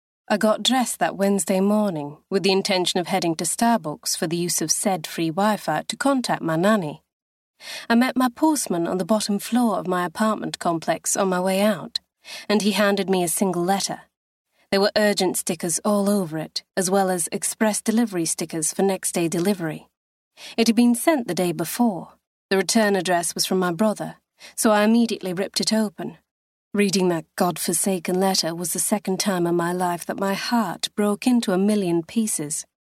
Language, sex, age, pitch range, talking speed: English, female, 30-49, 180-215 Hz, 190 wpm